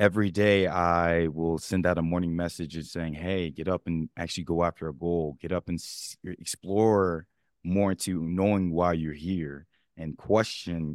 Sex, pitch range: male, 85-105 Hz